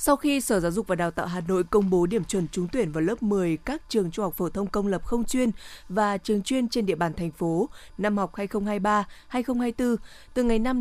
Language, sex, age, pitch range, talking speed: Vietnamese, female, 20-39, 180-225 Hz, 240 wpm